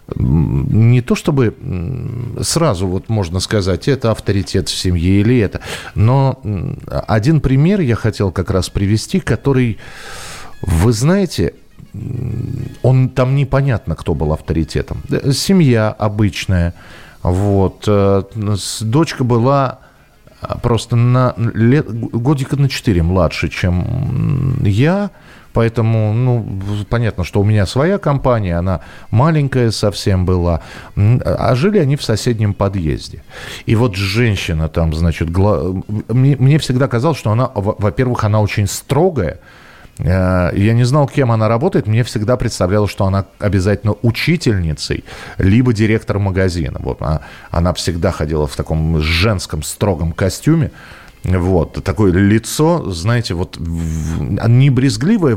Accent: native